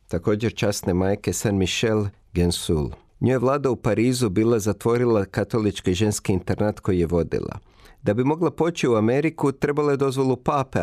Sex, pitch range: male, 100-135 Hz